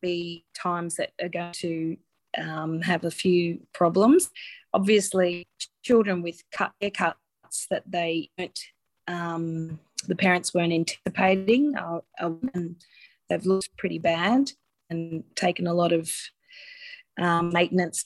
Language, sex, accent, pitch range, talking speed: English, female, Australian, 175-225 Hz, 115 wpm